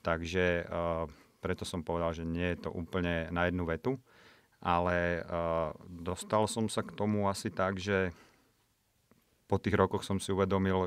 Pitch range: 85-100 Hz